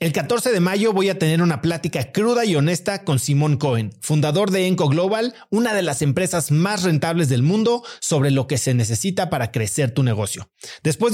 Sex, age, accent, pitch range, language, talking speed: male, 40-59, Mexican, 135-190 Hz, Spanish, 200 wpm